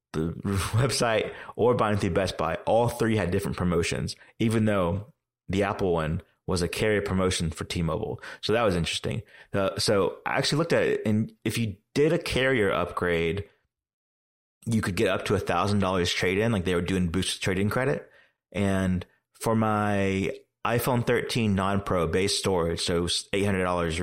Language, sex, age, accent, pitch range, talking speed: English, male, 30-49, American, 90-110 Hz, 170 wpm